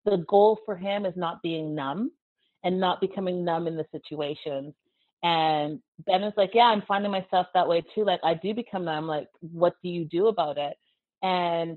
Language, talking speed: English, 200 wpm